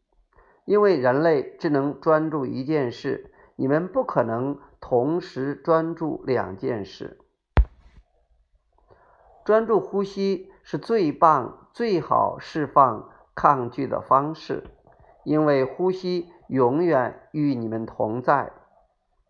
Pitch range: 125-180 Hz